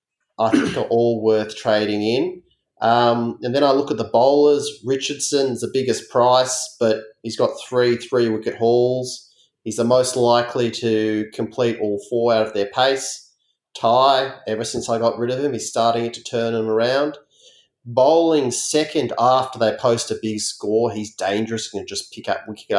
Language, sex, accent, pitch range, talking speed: English, male, Australian, 105-125 Hz, 180 wpm